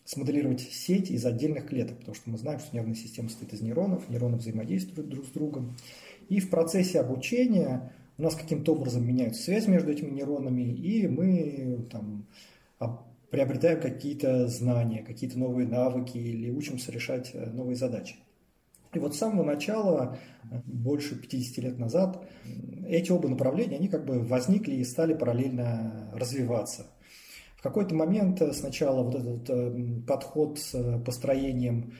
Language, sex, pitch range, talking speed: Russian, male, 120-150 Hz, 145 wpm